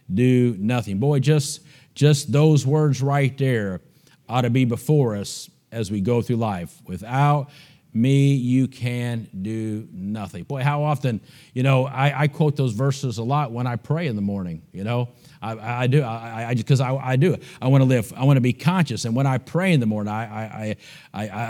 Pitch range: 115-145 Hz